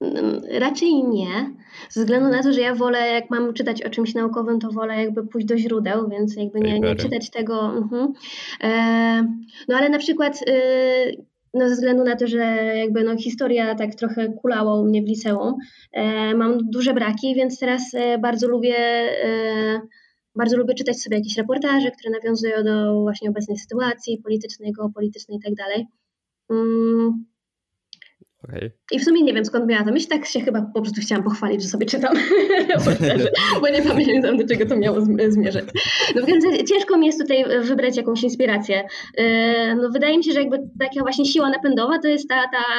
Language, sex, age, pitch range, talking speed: Polish, female, 20-39, 225-260 Hz, 170 wpm